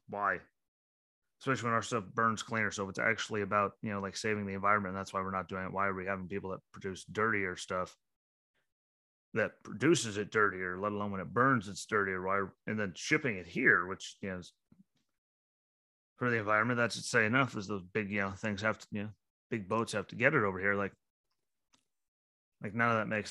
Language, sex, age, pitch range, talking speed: English, male, 30-49, 95-115 Hz, 220 wpm